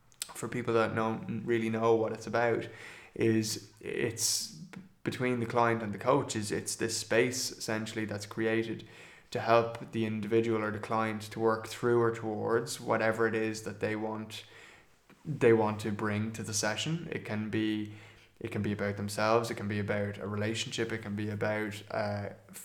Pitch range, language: 105-115 Hz, English